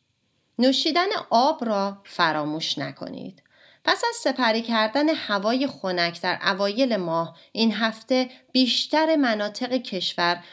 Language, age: Persian, 30-49